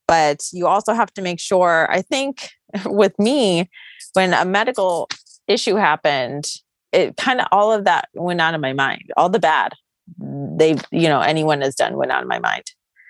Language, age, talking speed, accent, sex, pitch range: English, 30-49, 190 wpm, American, female, 145-180 Hz